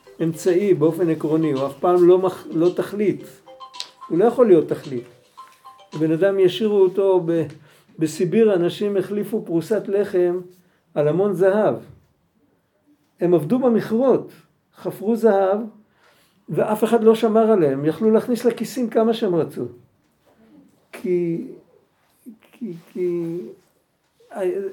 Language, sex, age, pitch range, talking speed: Hebrew, male, 50-69, 170-230 Hz, 115 wpm